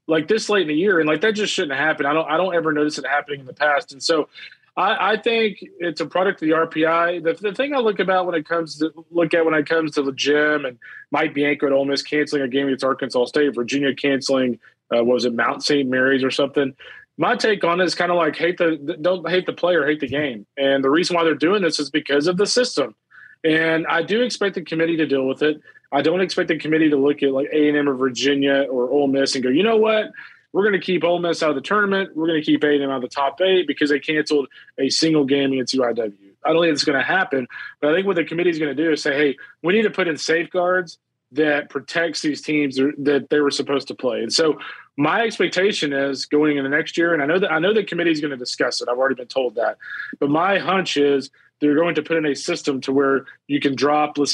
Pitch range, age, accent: 140-170 Hz, 30-49, American